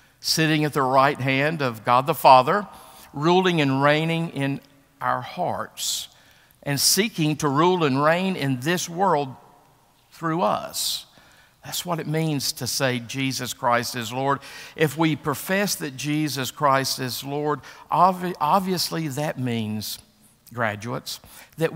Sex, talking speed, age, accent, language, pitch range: male, 135 wpm, 50-69, American, English, 120-155 Hz